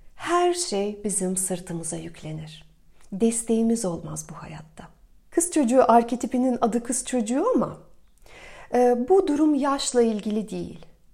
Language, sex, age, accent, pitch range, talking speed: Turkish, female, 40-59, native, 205-260 Hz, 120 wpm